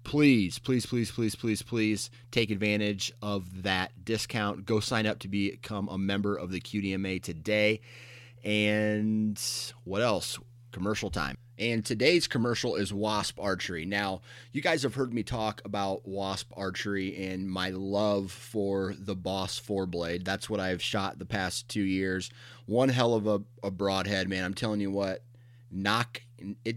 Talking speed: 160 wpm